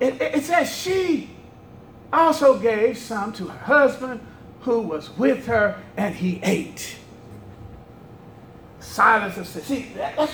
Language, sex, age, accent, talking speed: English, male, 40-59, American, 140 wpm